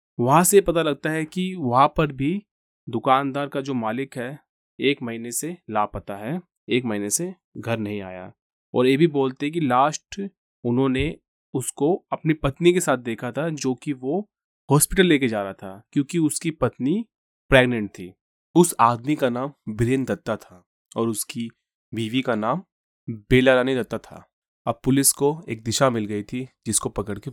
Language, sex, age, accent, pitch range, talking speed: Hindi, male, 30-49, native, 115-145 Hz, 175 wpm